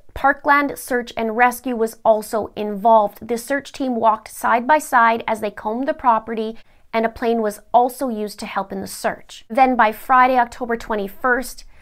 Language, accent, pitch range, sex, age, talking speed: English, American, 220-250 Hz, female, 30-49, 180 wpm